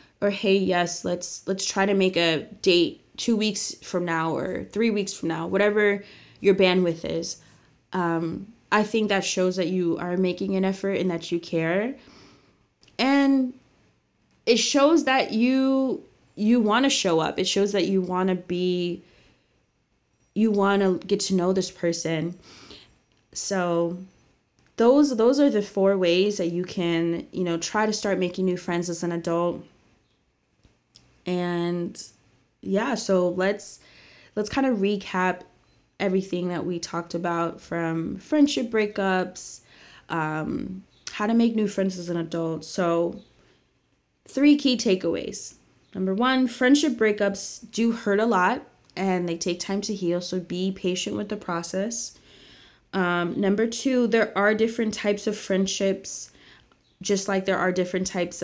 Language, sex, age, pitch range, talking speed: English, female, 20-39, 175-210 Hz, 150 wpm